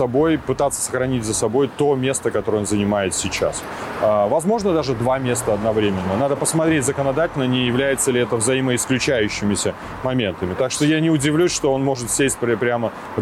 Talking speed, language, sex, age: 165 wpm, Russian, male, 30-49